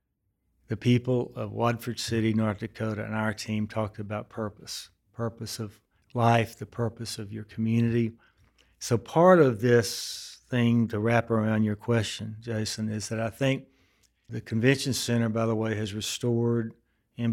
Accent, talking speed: American, 155 wpm